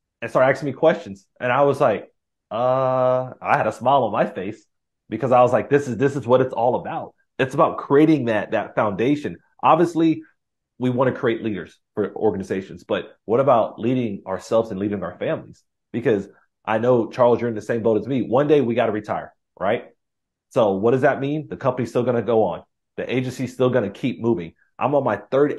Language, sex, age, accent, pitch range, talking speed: English, male, 30-49, American, 100-130 Hz, 215 wpm